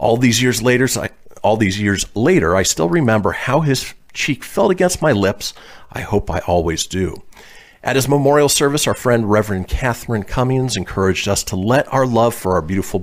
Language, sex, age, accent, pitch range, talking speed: English, male, 40-59, American, 95-135 Hz, 190 wpm